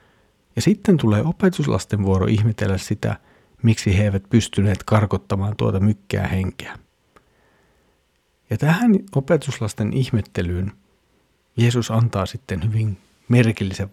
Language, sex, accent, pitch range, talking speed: Finnish, male, native, 100-135 Hz, 105 wpm